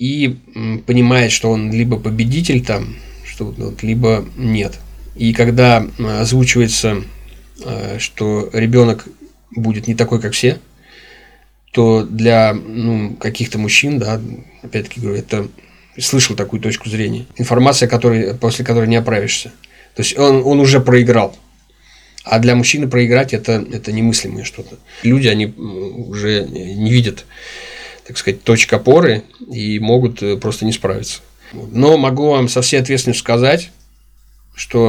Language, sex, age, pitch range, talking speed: Russian, male, 20-39, 110-125 Hz, 130 wpm